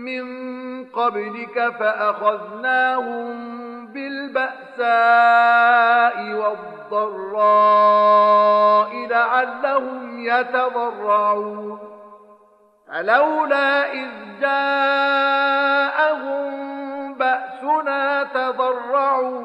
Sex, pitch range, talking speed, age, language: male, 210-260 Hz, 35 wpm, 50-69, Arabic